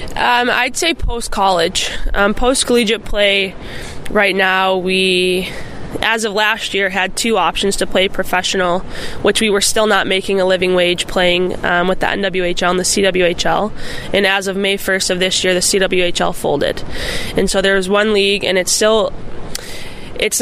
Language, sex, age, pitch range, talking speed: English, female, 20-39, 185-210 Hz, 165 wpm